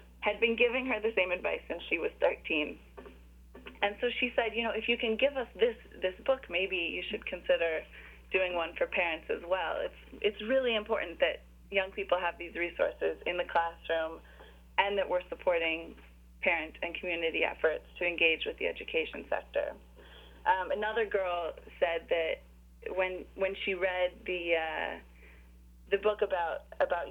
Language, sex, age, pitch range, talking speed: English, female, 20-39, 170-235 Hz, 170 wpm